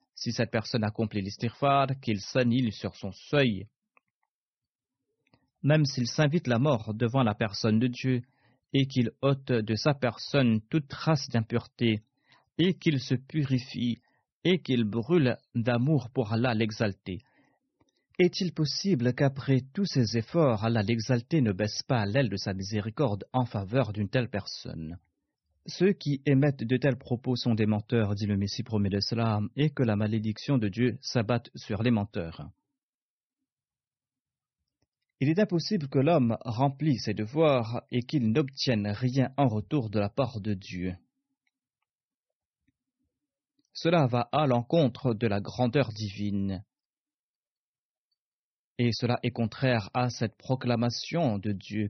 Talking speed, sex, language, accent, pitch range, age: 140 wpm, male, French, French, 110-140 Hz, 40-59